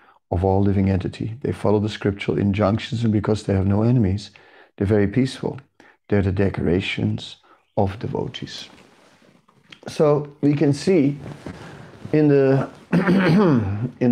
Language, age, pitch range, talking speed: English, 50-69, 100-130 Hz, 125 wpm